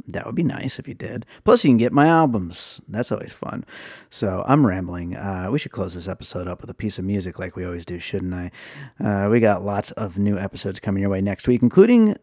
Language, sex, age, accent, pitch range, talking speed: English, male, 30-49, American, 95-110 Hz, 245 wpm